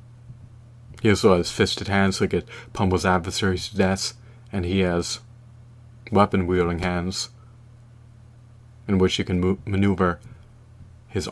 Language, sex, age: English, male, 30-49